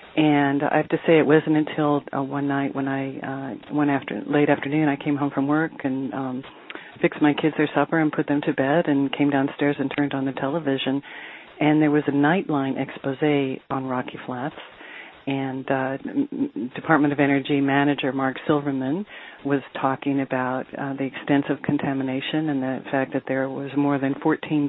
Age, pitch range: 50-69, 135-150 Hz